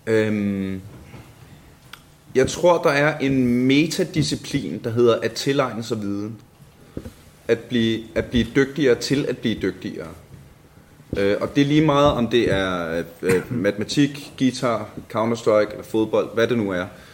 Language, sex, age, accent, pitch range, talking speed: Danish, male, 30-49, native, 115-150 Hz, 145 wpm